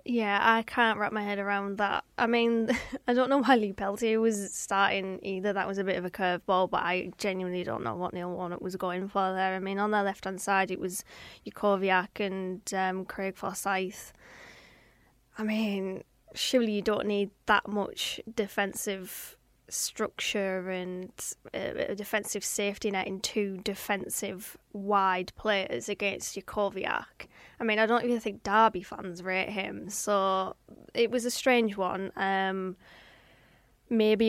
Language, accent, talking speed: English, British, 160 wpm